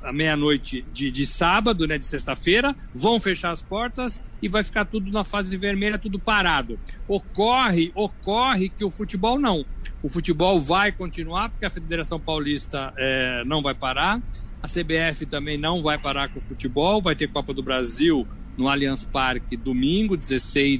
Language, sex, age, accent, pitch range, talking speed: Portuguese, male, 60-79, Brazilian, 150-205 Hz, 170 wpm